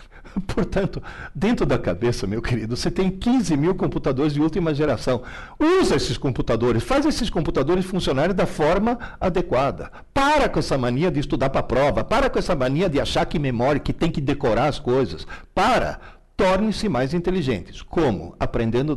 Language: Portuguese